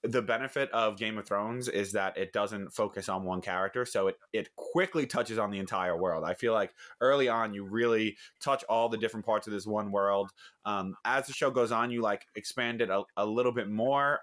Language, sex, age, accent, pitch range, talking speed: English, male, 20-39, American, 100-115 Hz, 230 wpm